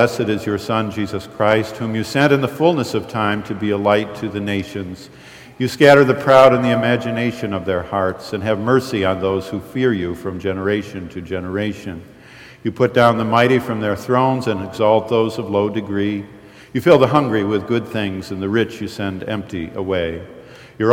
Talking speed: 205 wpm